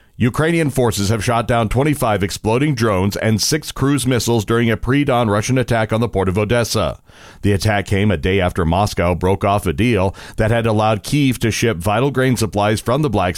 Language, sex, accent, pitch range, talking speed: English, male, American, 100-125 Hz, 200 wpm